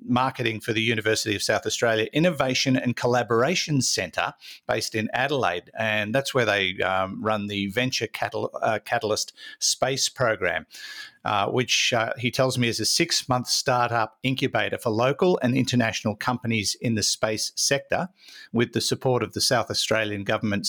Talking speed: 160 wpm